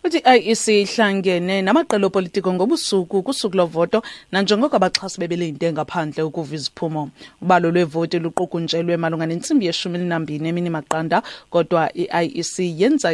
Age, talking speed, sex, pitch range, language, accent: 30-49, 125 wpm, female, 165-195 Hz, English, Nigerian